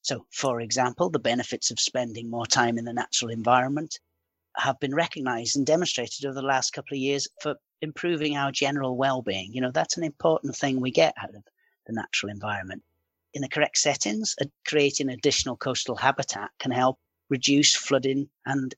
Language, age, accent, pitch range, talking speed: English, 40-59, British, 115-145 Hz, 175 wpm